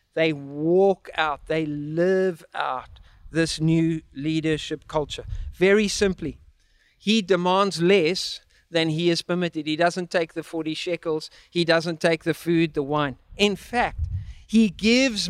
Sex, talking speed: male, 140 wpm